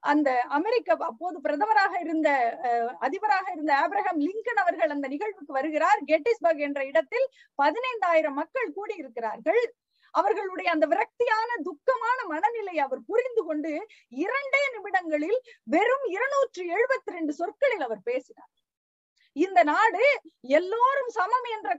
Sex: female